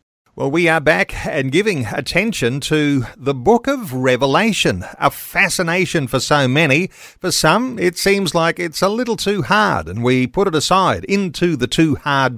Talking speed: 175 wpm